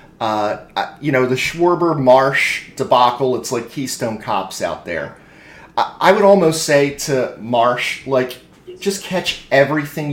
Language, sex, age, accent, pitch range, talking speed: English, male, 30-49, American, 125-150 Hz, 135 wpm